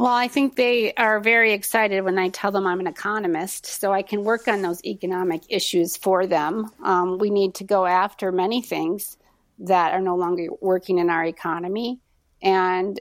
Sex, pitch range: female, 180-215 Hz